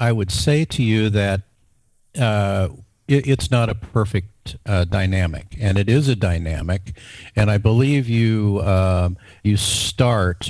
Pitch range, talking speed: 95-115 Hz, 145 wpm